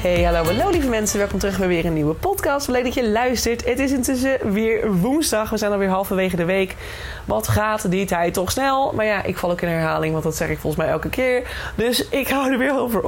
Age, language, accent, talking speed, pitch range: 20-39, Dutch, Dutch, 250 wpm, 180-235 Hz